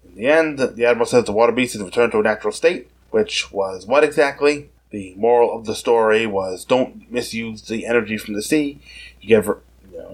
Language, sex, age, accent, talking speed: English, male, 20-39, American, 215 wpm